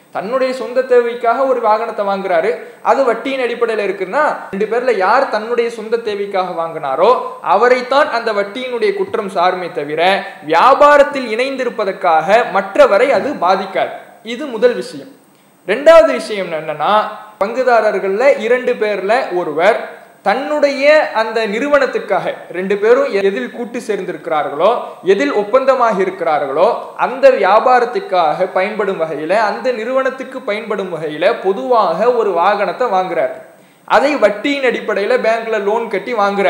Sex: male